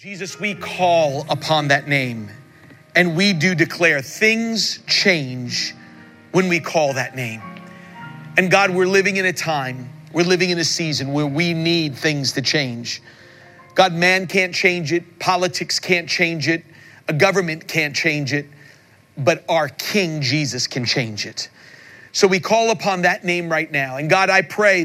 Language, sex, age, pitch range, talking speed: English, male, 40-59, 140-185 Hz, 165 wpm